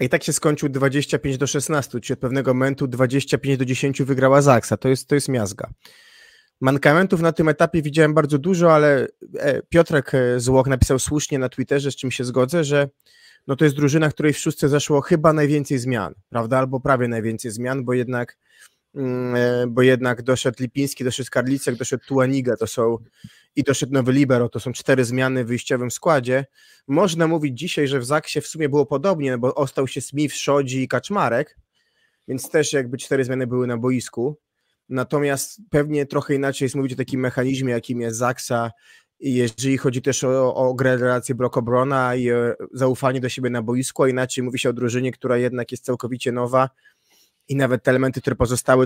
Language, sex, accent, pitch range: Polish, male, native, 125-145 Hz